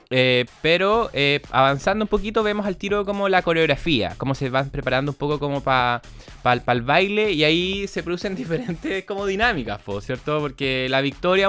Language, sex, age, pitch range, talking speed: Spanish, male, 20-39, 130-180 Hz, 200 wpm